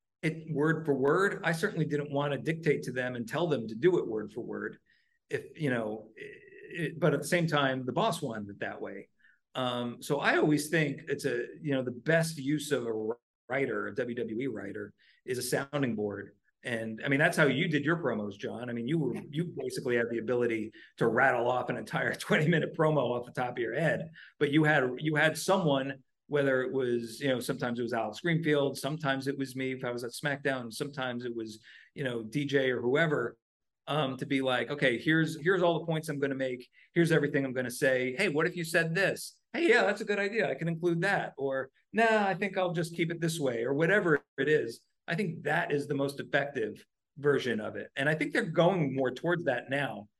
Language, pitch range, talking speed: English, 130-170 Hz, 230 wpm